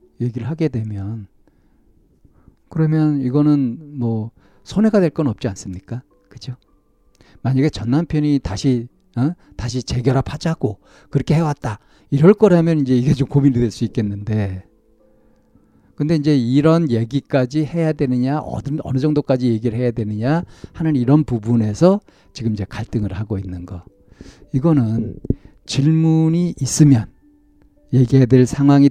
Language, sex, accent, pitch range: Korean, male, native, 110-150 Hz